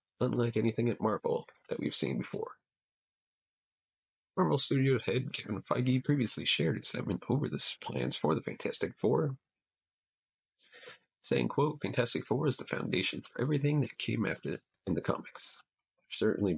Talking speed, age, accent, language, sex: 150 wpm, 40-59, American, English, male